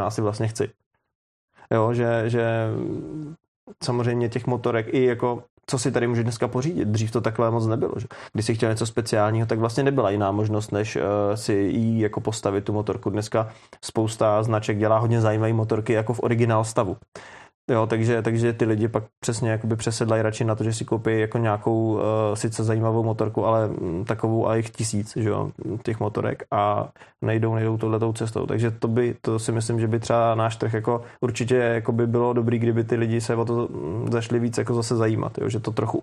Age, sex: 20-39, male